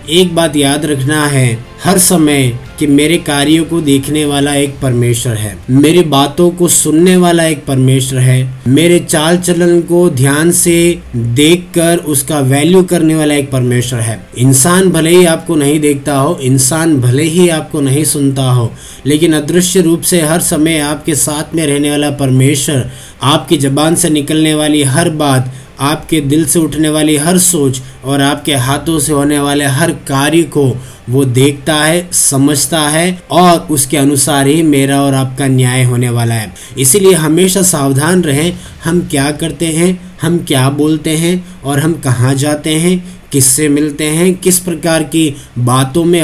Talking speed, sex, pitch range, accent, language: 165 wpm, male, 135-165 Hz, native, Hindi